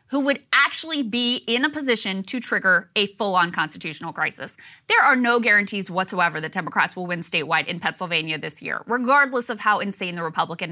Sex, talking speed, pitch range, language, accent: female, 185 wpm, 180-265 Hz, English, American